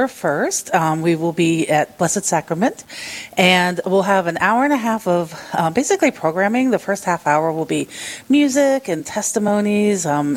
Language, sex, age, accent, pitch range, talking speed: English, female, 40-59, American, 160-200 Hz, 175 wpm